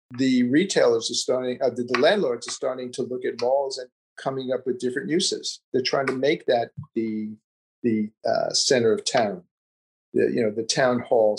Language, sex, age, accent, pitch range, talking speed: English, male, 50-69, American, 125-195 Hz, 195 wpm